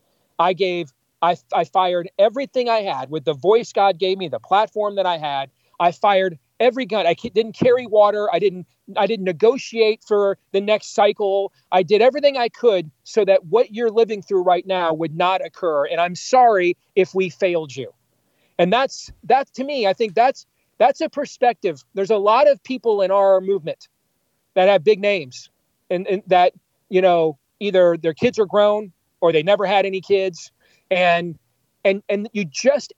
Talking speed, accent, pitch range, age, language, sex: 185 wpm, American, 175-220 Hz, 40-59, English, male